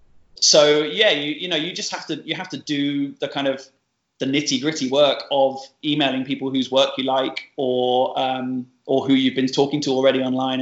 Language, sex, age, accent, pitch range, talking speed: English, male, 20-39, British, 130-145 Hz, 210 wpm